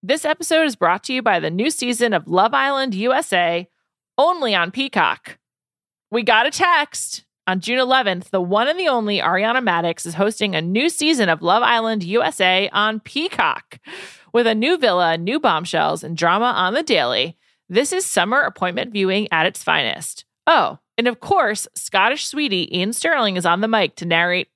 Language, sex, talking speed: English, female, 185 wpm